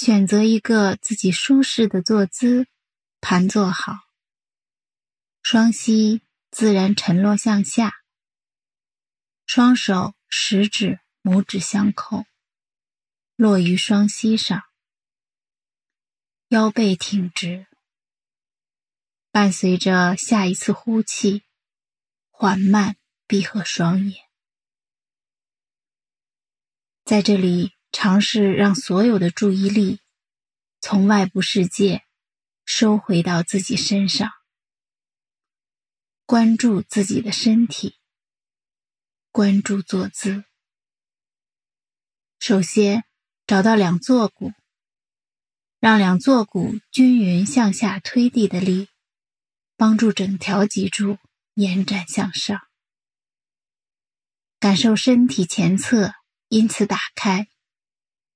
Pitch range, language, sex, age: 190-220 Hz, English, female, 20-39